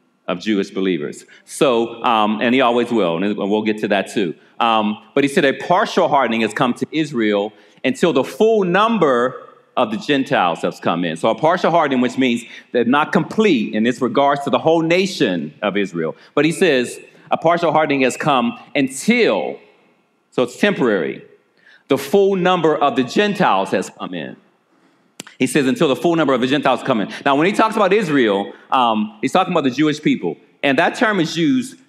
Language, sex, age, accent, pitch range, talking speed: English, male, 40-59, American, 120-175 Hz, 195 wpm